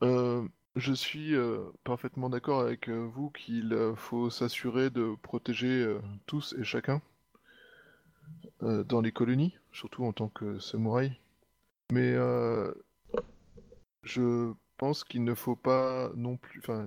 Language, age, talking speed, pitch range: French, 20-39, 140 wpm, 115-135 Hz